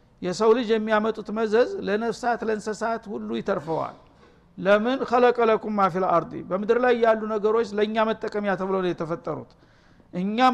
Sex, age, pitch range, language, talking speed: male, 60-79, 200-240 Hz, Amharic, 120 wpm